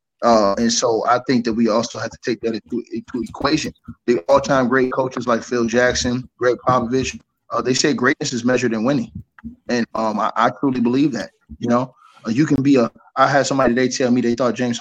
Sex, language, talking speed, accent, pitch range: male, English, 225 wpm, American, 120-140 Hz